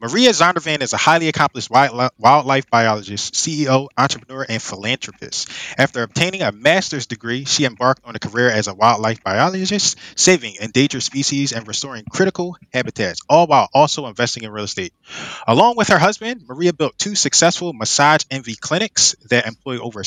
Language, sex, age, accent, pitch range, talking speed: English, male, 20-39, American, 115-150 Hz, 160 wpm